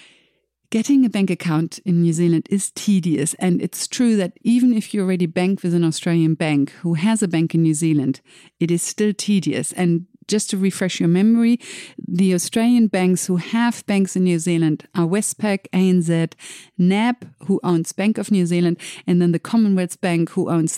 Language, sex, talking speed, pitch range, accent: English, female, 190 wpm, 165-195 Hz, German